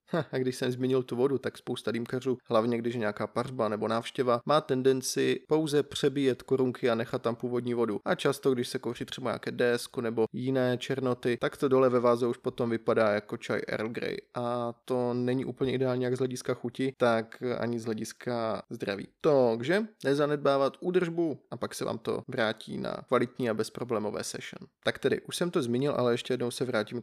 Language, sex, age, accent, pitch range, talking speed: Czech, male, 20-39, native, 120-135 Hz, 200 wpm